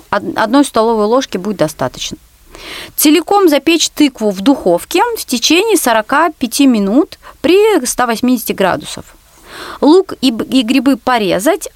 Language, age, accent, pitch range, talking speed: Russian, 30-49, native, 200-310 Hz, 105 wpm